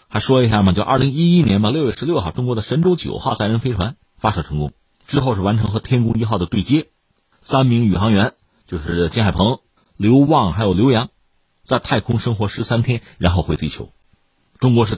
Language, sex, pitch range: Chinese, male, 90-135 Hz